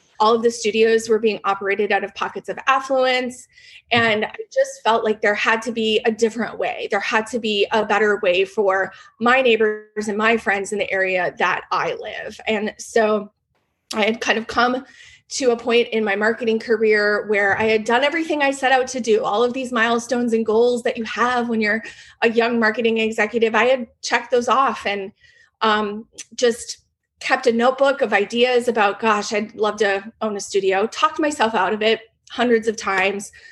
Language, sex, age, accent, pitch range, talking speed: English, female, 30-49, American, 205-240 Hz, 200 wpm